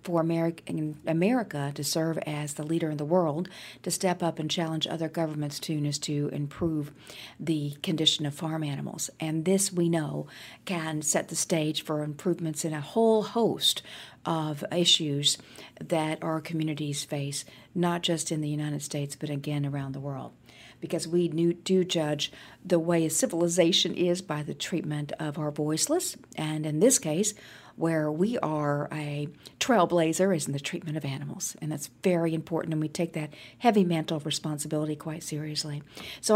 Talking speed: 165 wpm